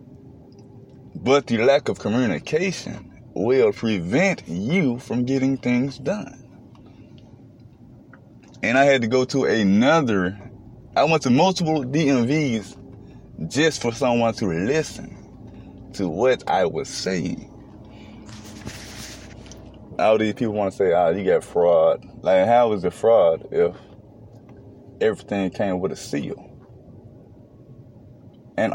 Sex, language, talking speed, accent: male, English, 115 wpm, American